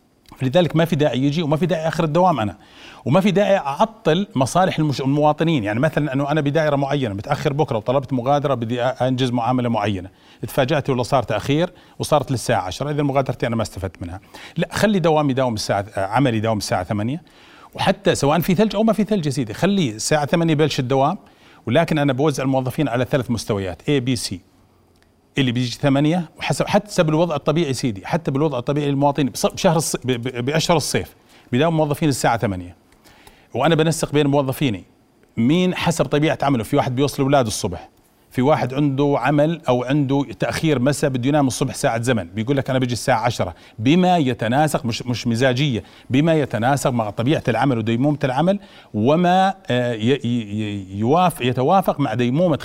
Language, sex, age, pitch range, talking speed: Arabic, male, 40-59, 120-155 Hz, 165 wpm